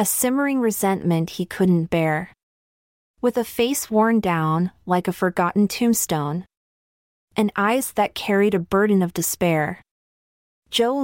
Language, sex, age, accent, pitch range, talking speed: English, female, 30-49, American, 170-220 Hz, 130 wpm